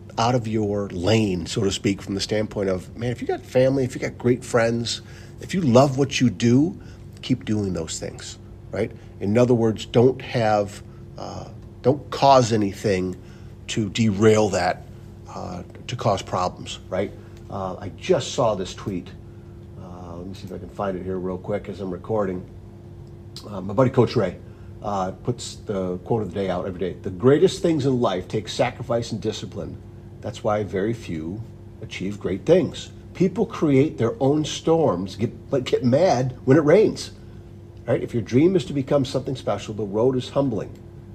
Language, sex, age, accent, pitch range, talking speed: English, male, 50-69, American, 100-120 Hz, 185 wpm